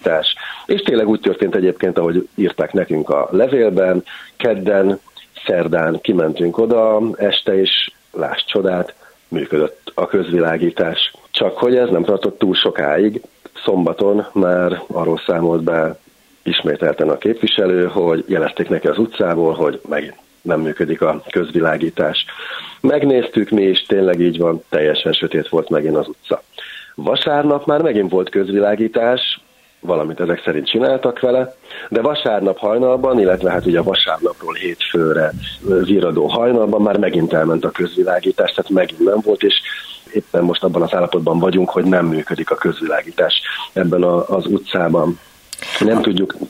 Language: Hungarian